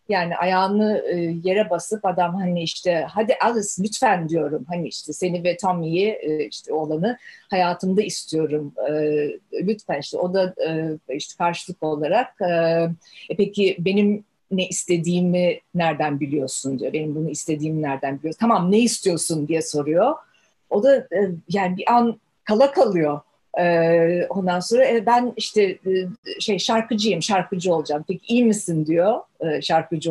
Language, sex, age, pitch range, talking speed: Turkish, female, 50-69, 165-230 Hz, 130 wpm